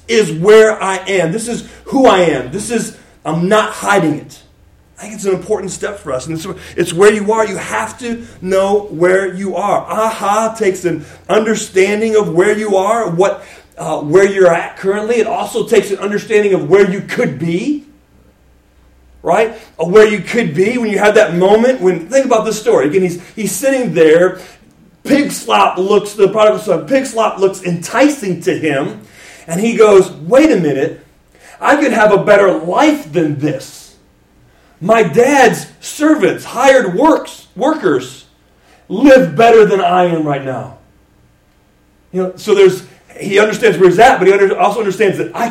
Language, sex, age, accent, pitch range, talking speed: English, male, 30-49, American, 175-225 Hz, 175 wpm